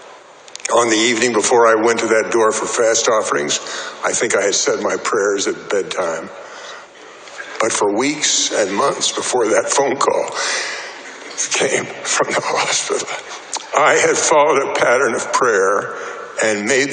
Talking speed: 150 wpm